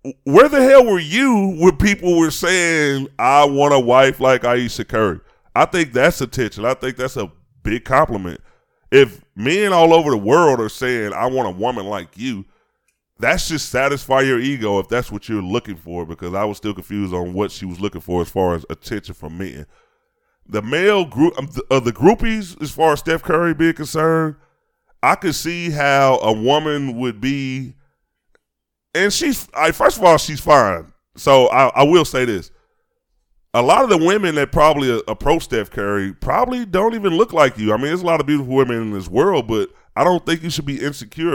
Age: 30-49